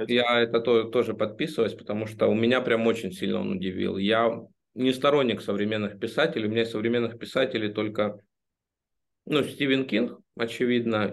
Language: Russian